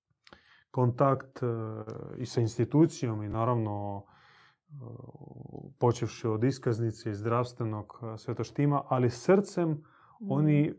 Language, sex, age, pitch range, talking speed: Croatian, male, 30-49, 120-155 Hz, 85 wpm